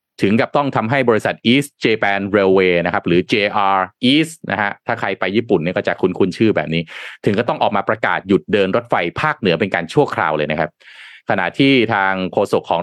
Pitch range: 95-150 Hz